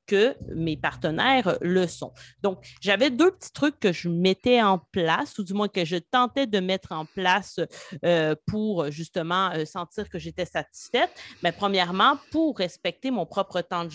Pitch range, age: 170-225 Hz, 30-49